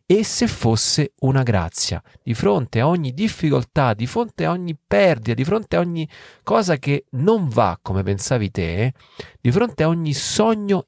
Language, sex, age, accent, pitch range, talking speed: Italian, male, 30-49, native, 120-195 Hz, 175 wpm